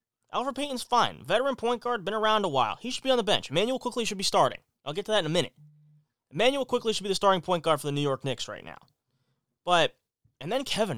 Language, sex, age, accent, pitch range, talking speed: English, male, 20-39, American, 150-245 Hz, 255 wpm